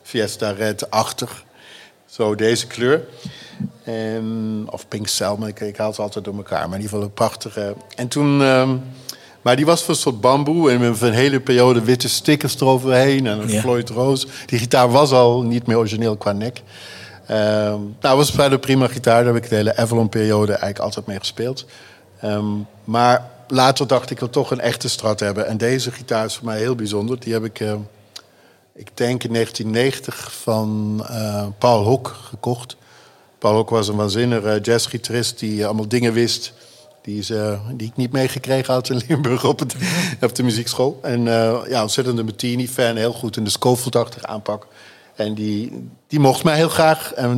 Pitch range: 110-130 Hz